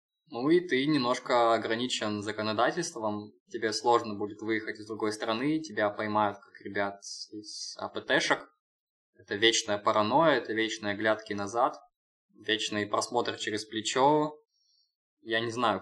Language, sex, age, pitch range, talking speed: Russian, male, 20-39, 105-145 Hz, 125 wpm